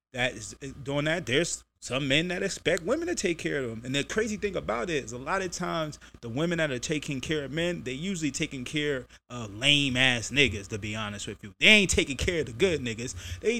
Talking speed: 245 wpm